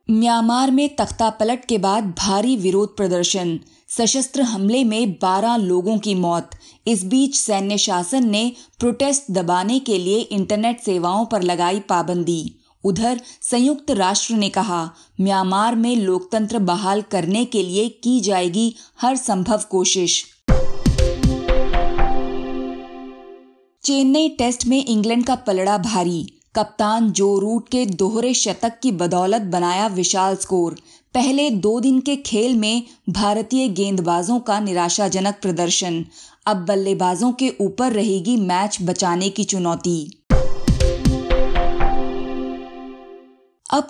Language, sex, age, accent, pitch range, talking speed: Hindi, female, 20-39, native, 180-235 Hz, 115 wpm